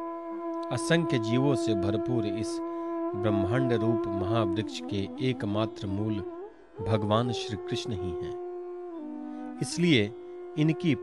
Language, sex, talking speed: Hindi, male, 100 wpm